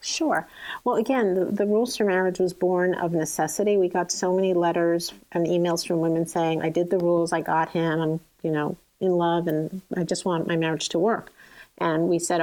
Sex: female